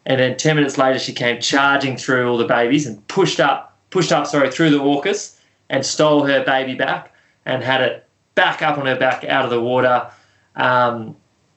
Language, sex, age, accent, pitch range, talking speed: English, male, 20-39, Australian, 115-130 Hz, 200 wpm